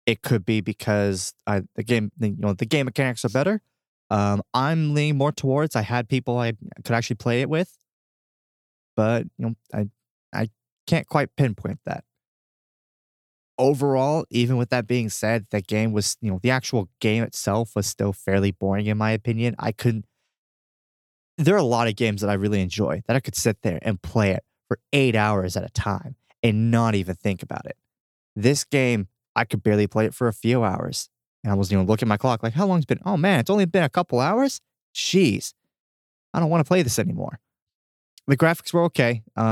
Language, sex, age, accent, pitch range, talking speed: English, male, 20-39, American, 100-125 Hz, 215 wpm